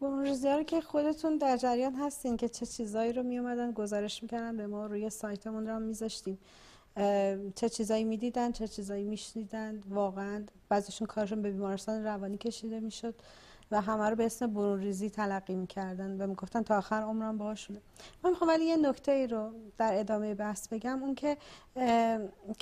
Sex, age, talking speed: female, 40-59, 165 wpm